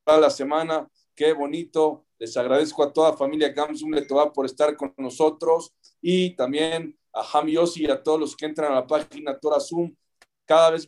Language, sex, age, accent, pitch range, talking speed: English, male, 40-59, Mexican, 145-165 Hz, 180 wpm